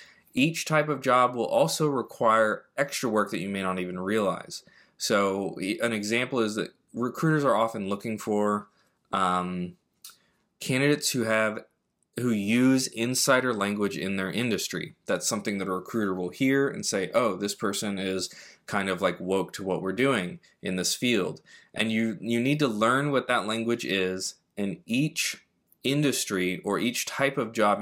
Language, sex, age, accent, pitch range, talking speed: English, male, 20-39, American, 95-120 Hz, 170 wpm